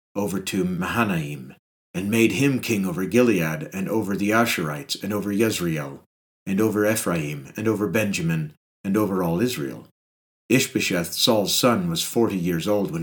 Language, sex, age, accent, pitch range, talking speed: English, male, 50-69, American, 90-125 Hz, 155 wpm